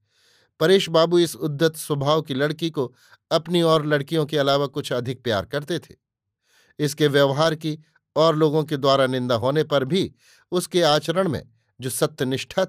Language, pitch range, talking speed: Hindi, 130-160 Hz, 160 wpm